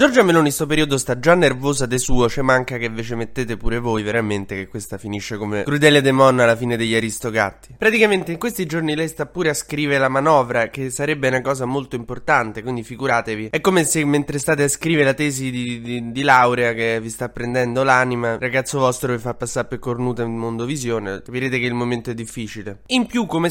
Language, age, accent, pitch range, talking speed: Italian, 20-39, native, 110-140 Hz, 220 wpm